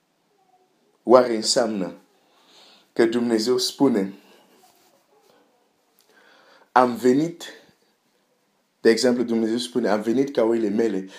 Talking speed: 85 wpm